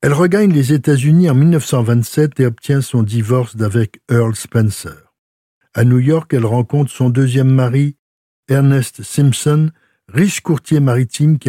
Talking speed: 140 wpm